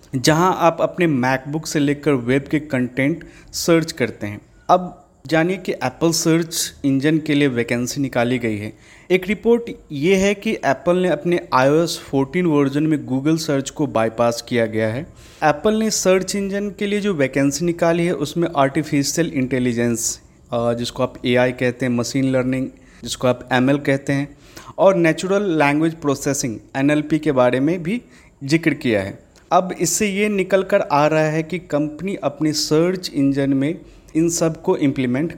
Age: 30-49